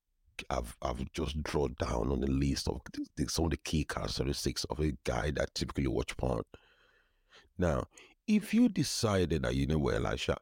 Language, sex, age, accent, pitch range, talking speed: English, male, 50-69, Nigerian, 70-95 Hz, 180 wpm